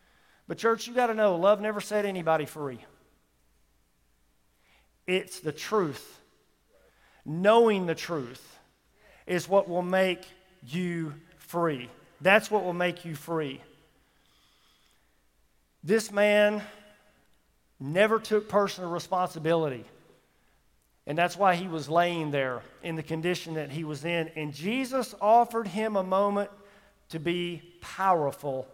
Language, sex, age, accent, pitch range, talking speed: English, male, 50-69, American, 150-205 Hz, 120 wpm